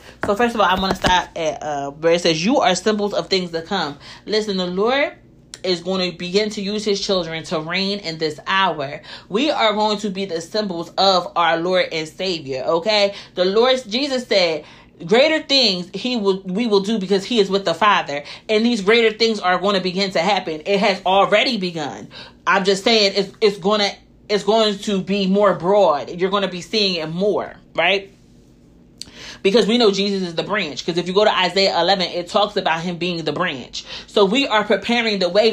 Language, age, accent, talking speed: English, 30-49, American, 215 wpm